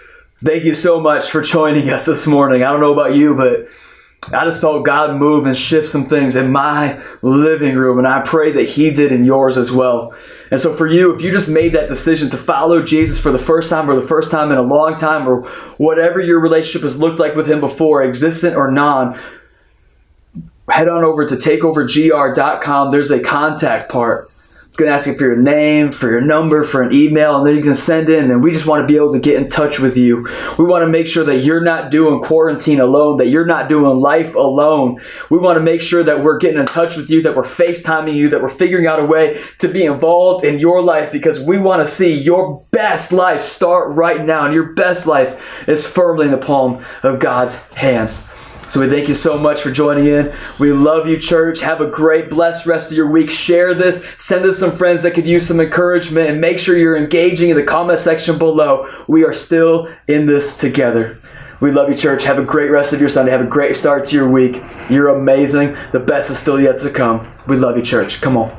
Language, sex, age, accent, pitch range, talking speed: English, male, 20-39, American, 140-165 Hz, 235 wpm